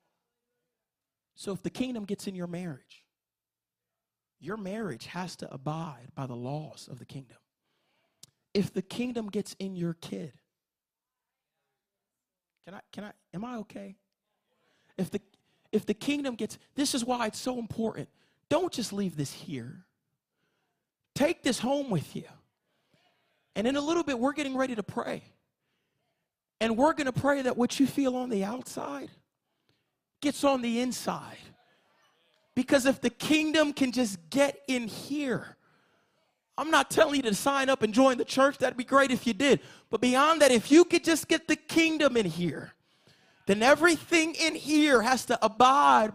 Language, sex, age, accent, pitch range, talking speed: English, male, 30-49, American, 200-285 Hz, 165 wpm